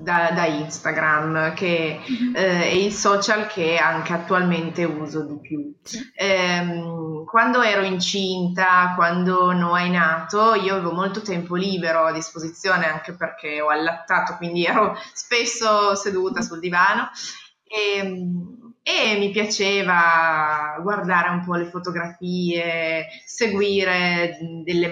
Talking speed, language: 120 wpm, English